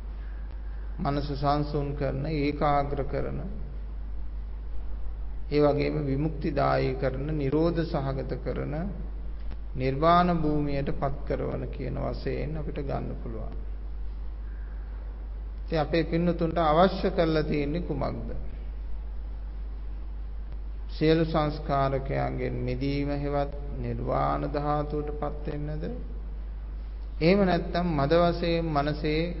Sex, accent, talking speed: male, Indian, 60 wpm